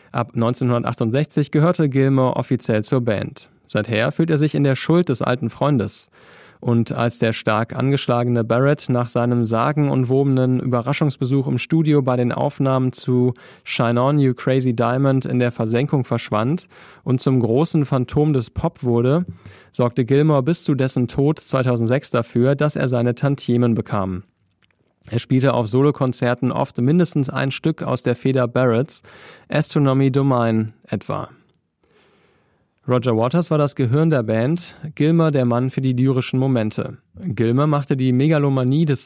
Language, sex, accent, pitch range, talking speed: German, male, German, 120-145 Hz, 150 wpm